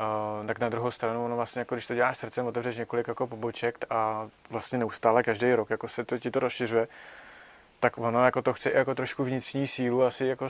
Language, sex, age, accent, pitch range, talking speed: Czech, male, 20-39, native, 120-130 Hz, 210 wpm